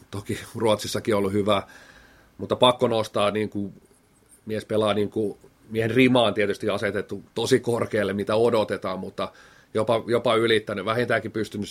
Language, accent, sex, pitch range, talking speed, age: Finnish, native, male, 100-115 Hz, 130 wpm, 30-49